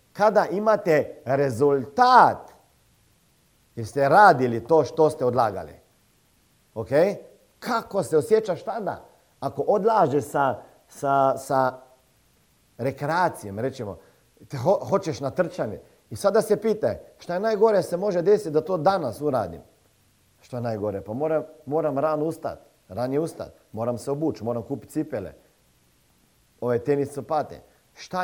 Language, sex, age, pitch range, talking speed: Croatian, male, 40-59, 120-160 Hz, 125 wpm